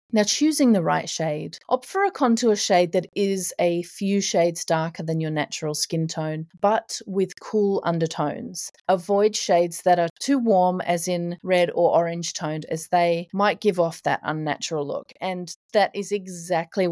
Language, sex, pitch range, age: English, female, 170-210 Hz, 30-49